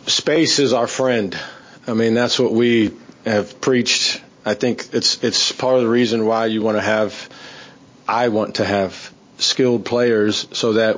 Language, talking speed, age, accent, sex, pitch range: English, 175 wpm, 40-59, American, male, 105-120 Hz